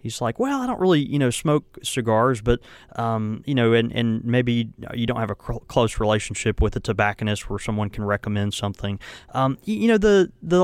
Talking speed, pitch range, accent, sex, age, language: 215 wpm, 105-130 Hz, American, male, 20-39, English